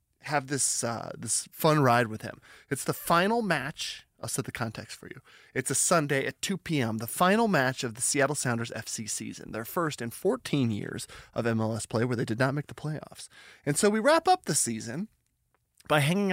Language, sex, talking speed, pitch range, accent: English, male, 210 wpm, 115-175 Hz, American